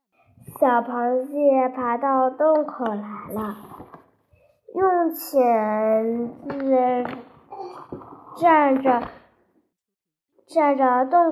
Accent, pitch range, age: native, 235-300 Hz, 10-29